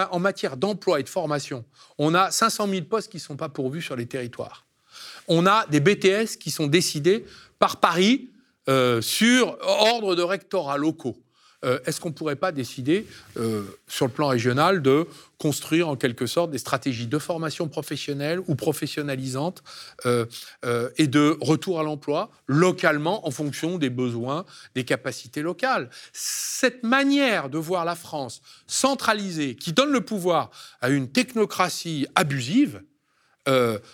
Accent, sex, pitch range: French, male, 120-175 Hz